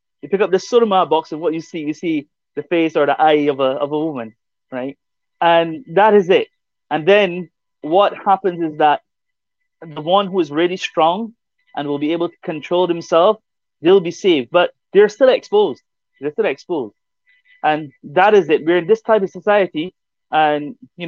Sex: male